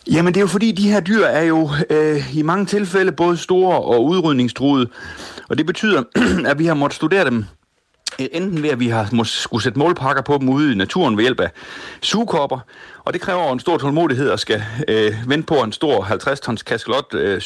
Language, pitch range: Danish, 120-160 Hz